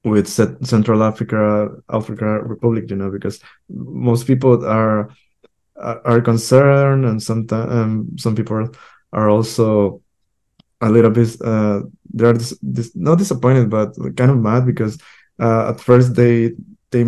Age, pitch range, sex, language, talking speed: 20-39, 105-120 Hz, male, English, 135 wpm